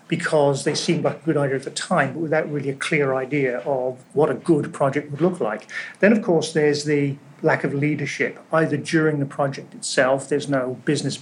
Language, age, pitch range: English, 40-59, 140-175 Hz